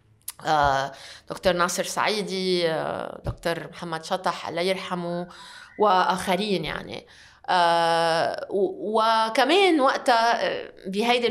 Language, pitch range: Arabic, 175-235 Hz